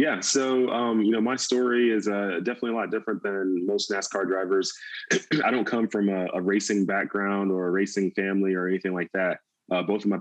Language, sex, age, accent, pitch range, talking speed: English, male, 20-39, American, 90-100 Hz, 220 wpm